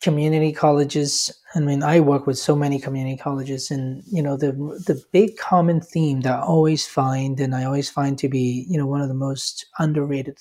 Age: 30-49